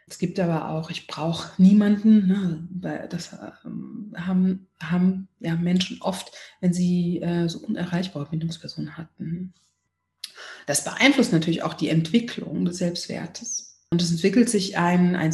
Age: 30-49